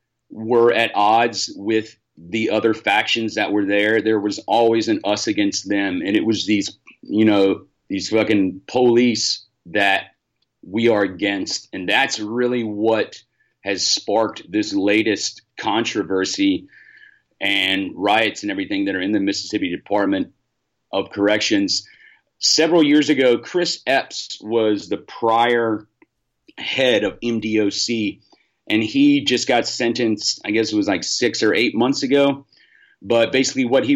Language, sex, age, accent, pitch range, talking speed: English, male, 40-59, American, 110-135 Hz, 145 wpm